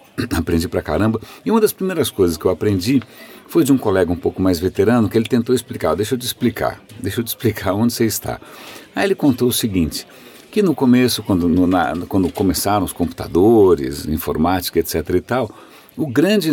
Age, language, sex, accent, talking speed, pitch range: 60-79, Portuguese, male, Brazilian, 200 wpm, 105-135 Hz